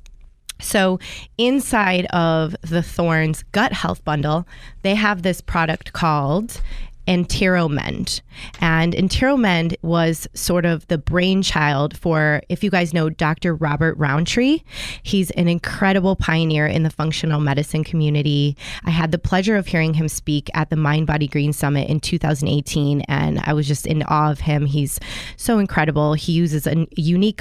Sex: female